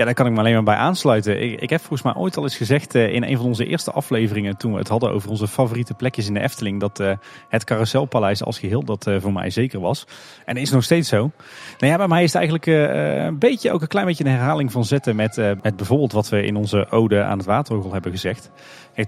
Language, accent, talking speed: Dutch, Dutch, 265 wpm